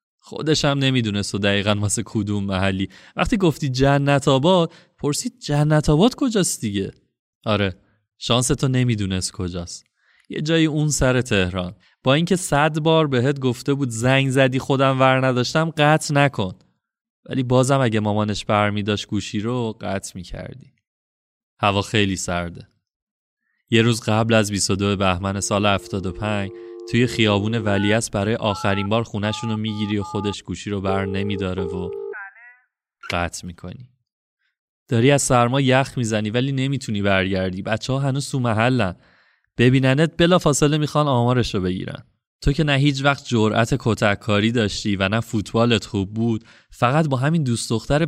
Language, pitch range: Persian, 100-135 Hz